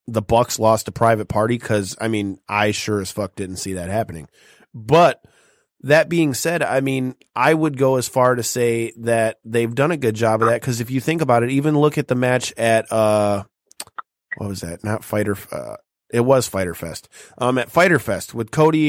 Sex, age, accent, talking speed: male, 30-49, American, 215 wpm